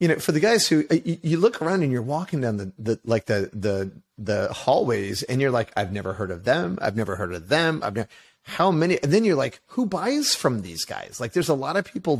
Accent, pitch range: American, 110-150 Hz